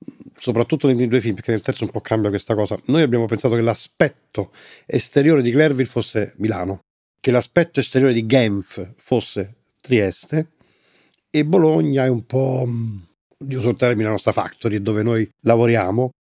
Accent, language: native, Italian